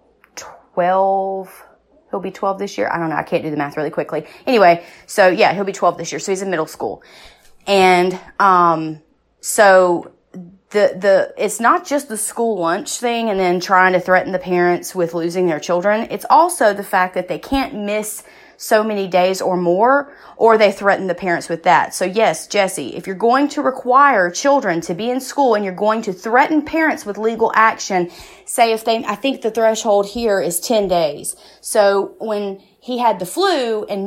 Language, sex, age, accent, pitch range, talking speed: English, female, 30-49, American, 185-255 Hz, 195 wpm